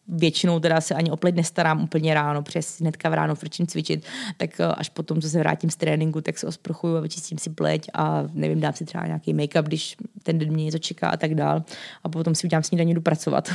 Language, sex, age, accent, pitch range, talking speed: Czech, female, 20-39, native, 155-185 Hz, 230 wpm